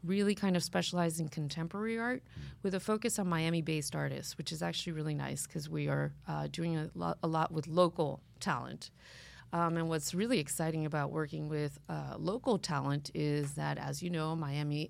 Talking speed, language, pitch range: 190 wpm, English, 145-165 Hz